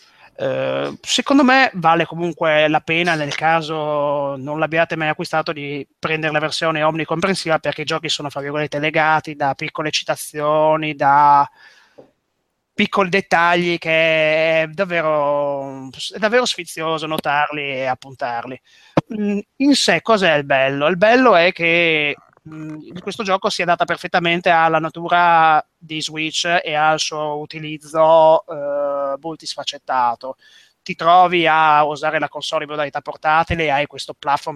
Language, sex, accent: Italian, male, native